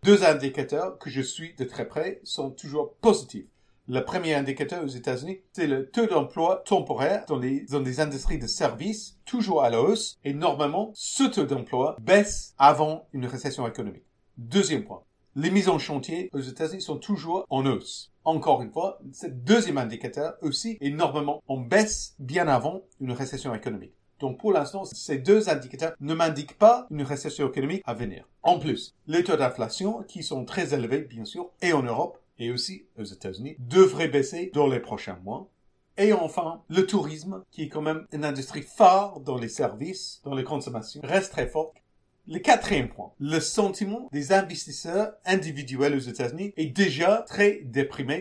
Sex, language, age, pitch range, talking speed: male, English, 50-69, 135-190 Hz, 175 wpm